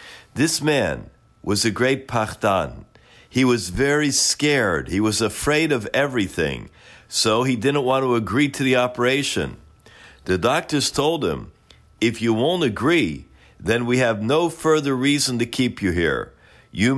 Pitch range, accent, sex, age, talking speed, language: 110-145 Hz, American, male, 50-69, 150 wpm, English